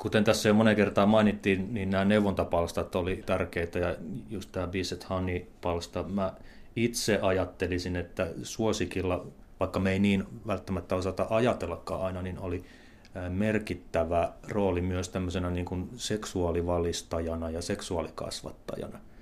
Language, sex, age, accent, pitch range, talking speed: Finnish, male, 30-49, native, 90-105 Hz, 130 wpm